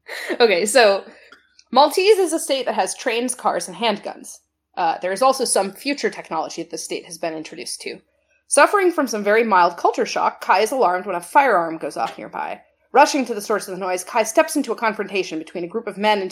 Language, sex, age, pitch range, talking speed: English, female, 30-49, 180-250 Hz, 220 wpm